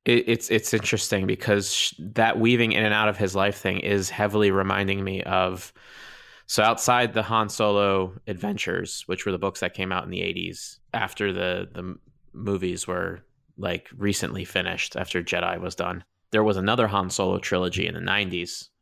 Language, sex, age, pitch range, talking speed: English, male, 20-39, 95-110 Hz, 175 wpm